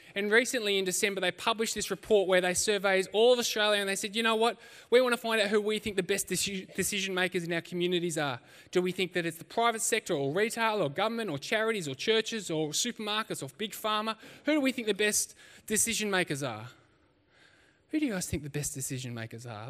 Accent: Australian